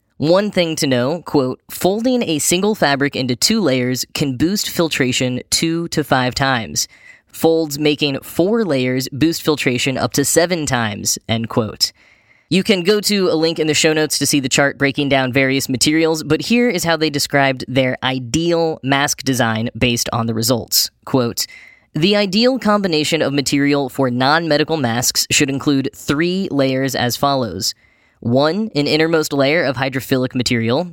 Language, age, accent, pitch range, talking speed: English, 10-29, American, 125-160 Hz, 165 wpm